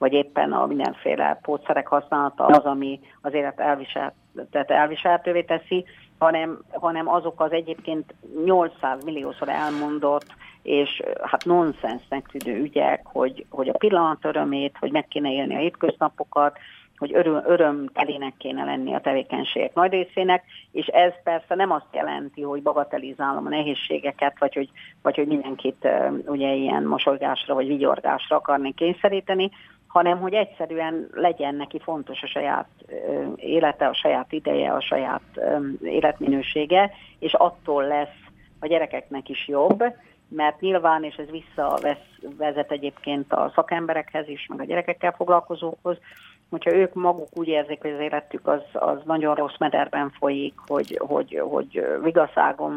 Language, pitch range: Hungarian, 145-170 Hz